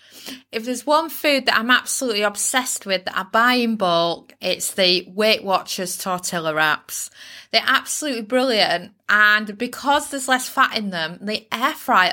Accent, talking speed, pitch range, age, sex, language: British, 165 wpm, 180-215 Hz, 20-39, female, English